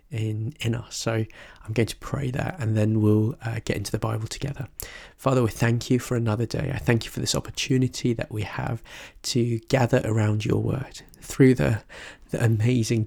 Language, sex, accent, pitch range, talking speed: English, male, British, 115-125 Hz, 195 wpm